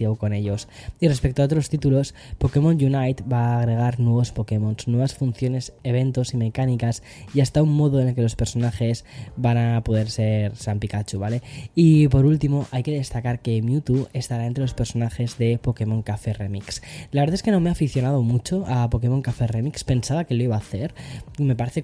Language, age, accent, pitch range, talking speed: Spanish, 10-29, Spanish, 115-135 Hz, 200 wpm